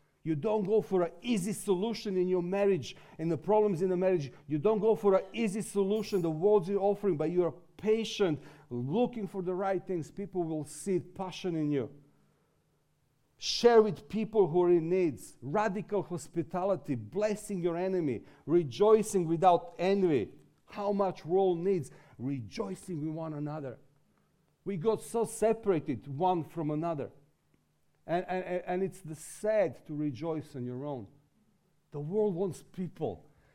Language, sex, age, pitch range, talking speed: English, male, 50-69, 155-195 Hz, 155 wpm